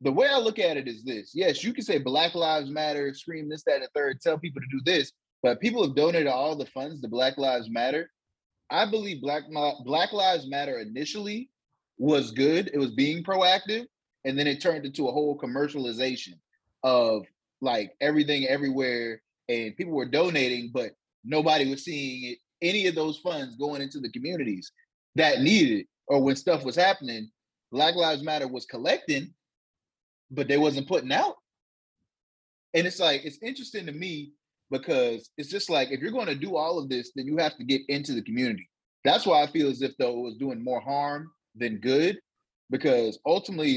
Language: English